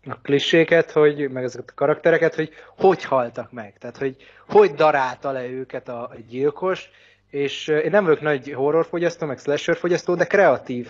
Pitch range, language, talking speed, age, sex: 130-155 Hz, Hungarian, 160 wpm, 20-39, male